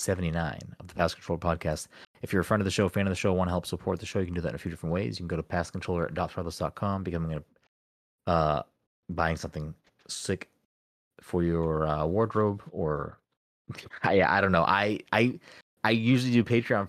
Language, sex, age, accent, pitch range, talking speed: English, male, 30-49, American, 85-105 Hz, 215 wpm